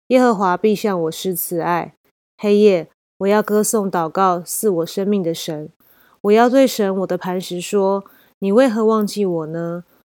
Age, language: 20-39, Chinese